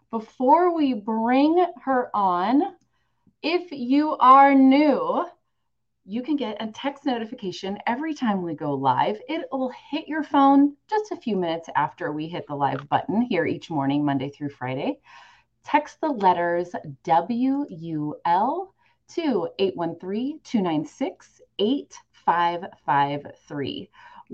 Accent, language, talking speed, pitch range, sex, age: American, English, 115 wpm, 185-280 Hz, female, 30-49